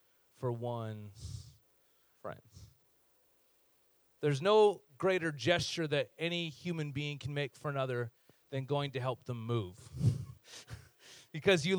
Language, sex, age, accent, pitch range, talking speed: English, male, 30-49, American, 140-210 Hz, 115 wpm